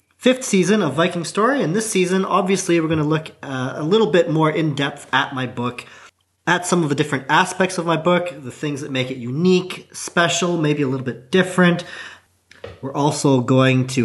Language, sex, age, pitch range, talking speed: English, male, 40-59, 125-175 Hz, 200 wpm